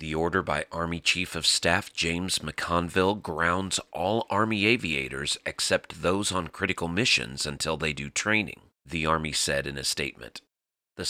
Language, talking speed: English, 155 wpm